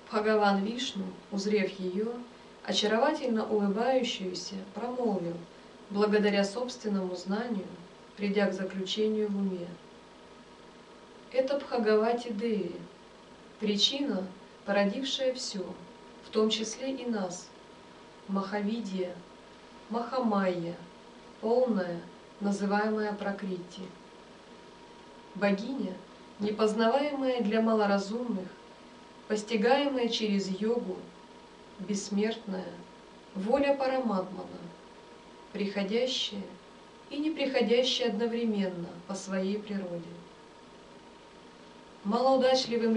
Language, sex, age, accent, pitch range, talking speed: Russian, female, 20-39, native, 195-235 Hz, 70 wpm